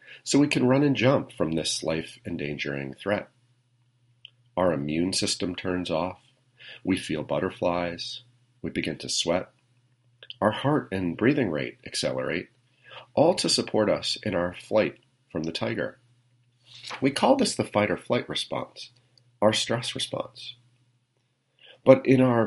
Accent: American